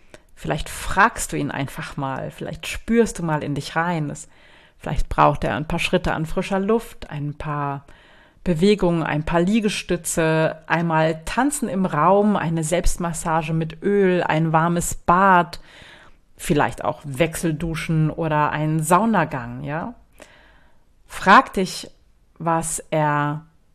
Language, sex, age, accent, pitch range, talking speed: German, female, 30-49, German, 150-180 Hz, 125 wpm